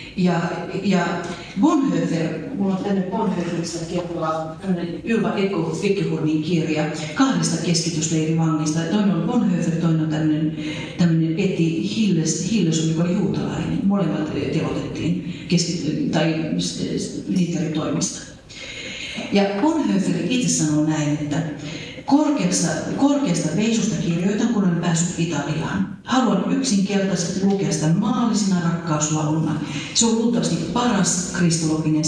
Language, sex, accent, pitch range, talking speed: Finnish, female, native, 155-200 Hz, 100 wpm